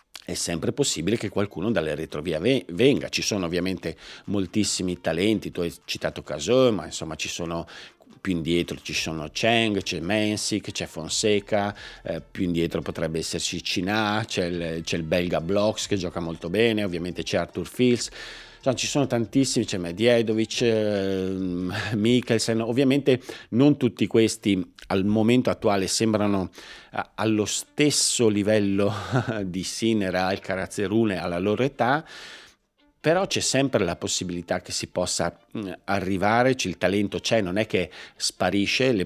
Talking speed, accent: 140 wpm, native